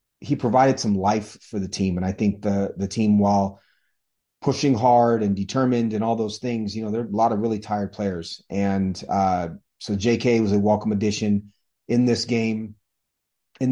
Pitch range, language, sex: 100-115 Hz, English, male